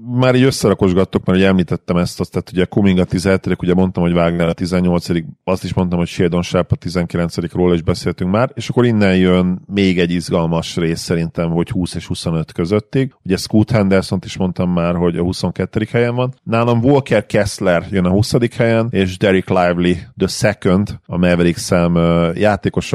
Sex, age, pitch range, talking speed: male, 40-59, 85-115 Hz, 190 wpm